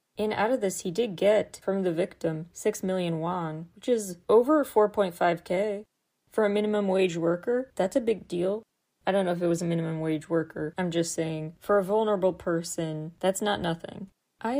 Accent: American